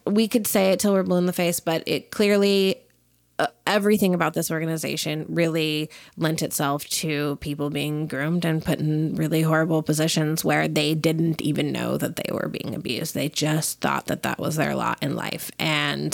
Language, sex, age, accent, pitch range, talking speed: English, female, 20-39, American, 165-225 Hz, 195 wpm